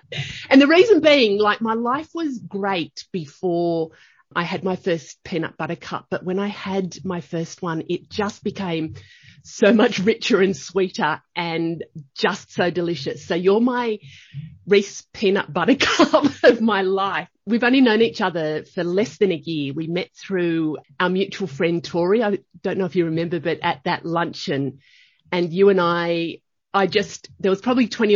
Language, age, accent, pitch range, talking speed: English, 30-49, Australian, 165-205 Hz, 175 wpm